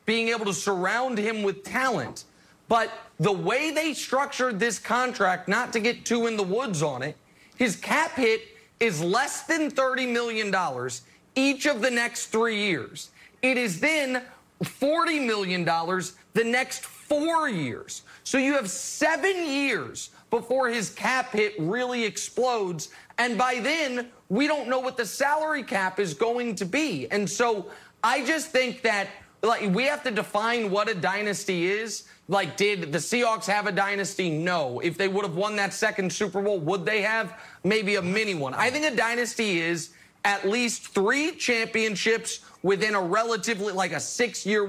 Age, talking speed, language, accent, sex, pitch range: 30-49, 170 wpm, English, American, male, 200-265 Hz